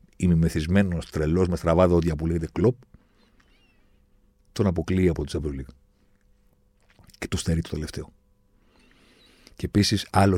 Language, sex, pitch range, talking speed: Greek, male, 85-120 Hz, 125 wpm